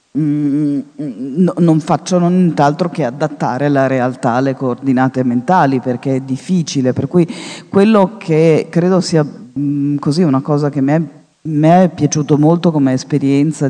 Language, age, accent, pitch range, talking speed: Italian, 40-59, native, 130-150 Hz, 150 wpm